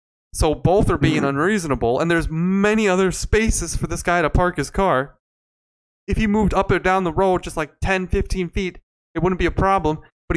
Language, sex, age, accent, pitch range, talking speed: English, male, 30-49, American, 130-190 Hz, 210 wpm